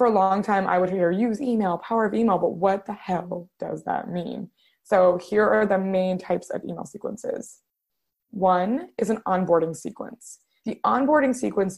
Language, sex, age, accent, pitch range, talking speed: English, female, 20-39, American, 185-235 Hz, 185 wpm